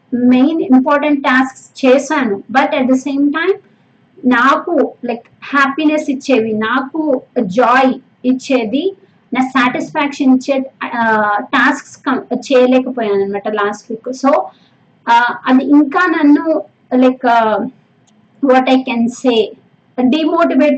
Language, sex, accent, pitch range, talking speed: Telugu, female, native, 240-285 Hz, 95 wpm